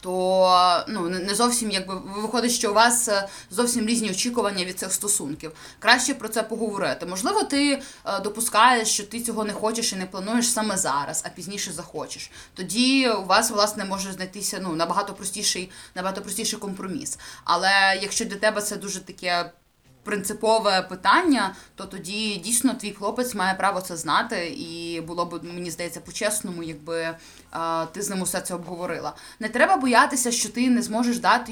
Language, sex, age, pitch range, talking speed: Ukrainian, female, 20-39, 190-230 Hz, 165 wpm